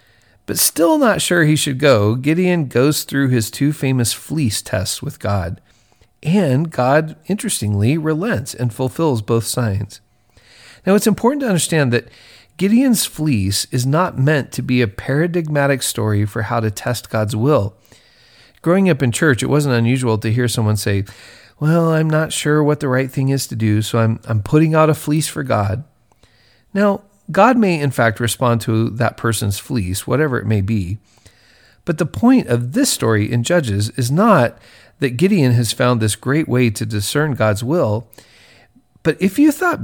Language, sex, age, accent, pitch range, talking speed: English, male, 40-59, American, 110-155 Hz, 175 wpm